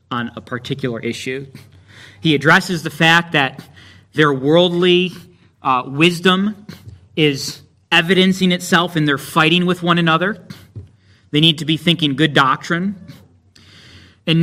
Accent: American